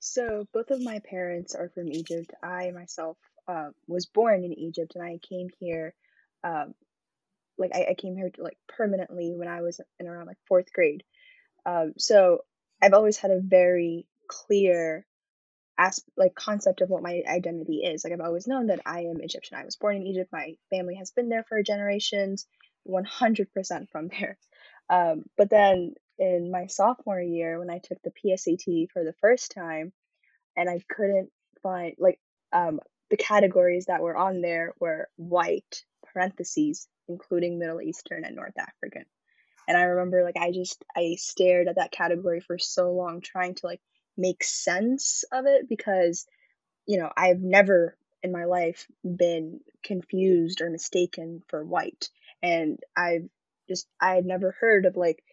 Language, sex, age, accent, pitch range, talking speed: English, female, 10-29, American, 175-205 Hz, 170 wpm